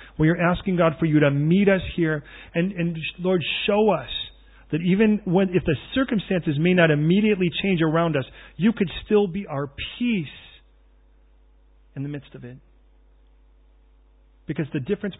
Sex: male